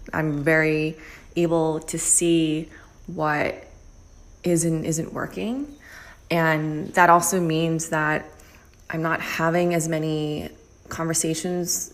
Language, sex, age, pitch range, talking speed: English, female, 20-39, 150-175 Hz, 100 wpm